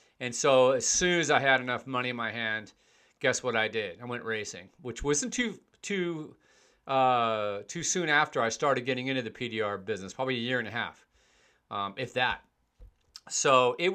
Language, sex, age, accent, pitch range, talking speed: English, male, 40-59, American, 115-145 Hz, 190 wpm